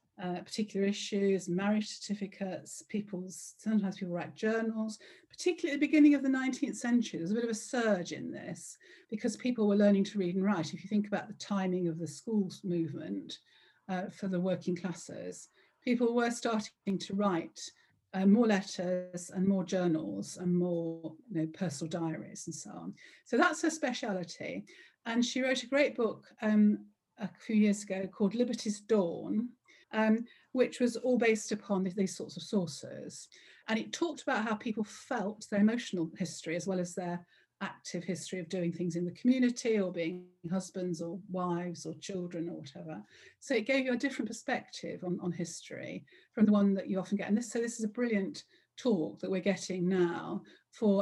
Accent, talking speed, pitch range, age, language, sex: British, 185 wpm, 180-225 Hz, 50-69, English, female